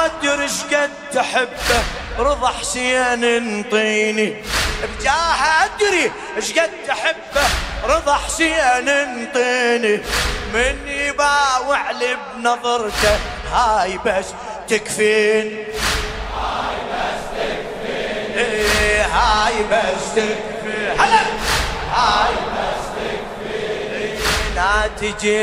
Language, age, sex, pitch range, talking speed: Arabic, 30-49, male, 215-280 Hz, 80 wpm